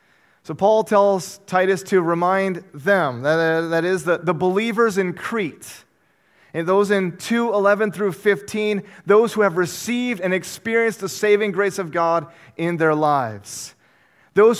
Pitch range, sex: 160-205 Hz, male